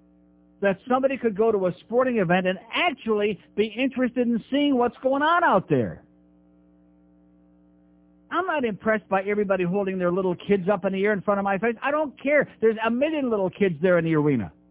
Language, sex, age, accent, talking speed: English, male, 50-69, American, 200 wpm